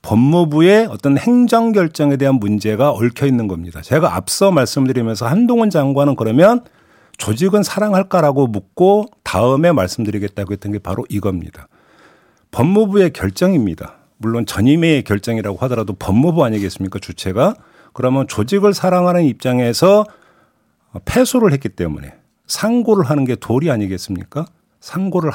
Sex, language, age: male, Korean, 50-69